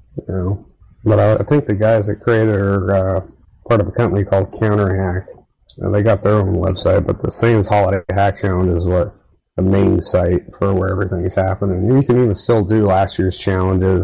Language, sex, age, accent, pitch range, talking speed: English, male, 30-49, American, 90-105 Hz, 205 wpm